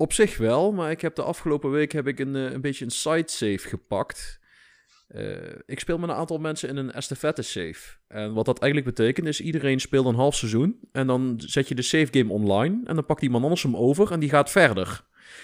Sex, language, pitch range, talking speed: male, Dutch, 120-150 Hz, 230 wpm